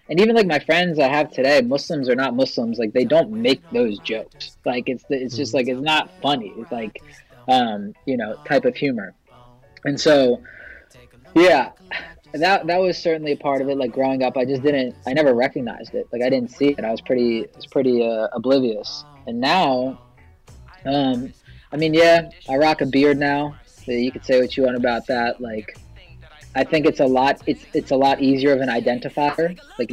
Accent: American